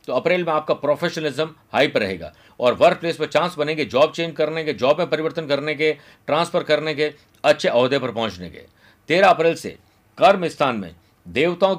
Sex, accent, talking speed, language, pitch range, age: male, native, 195 wpm, Hindi, 115-165 Hz, 50-69